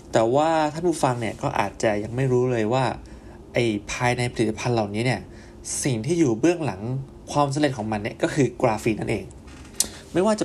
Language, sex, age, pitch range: Thai, male, 20-39, 110-140 Hz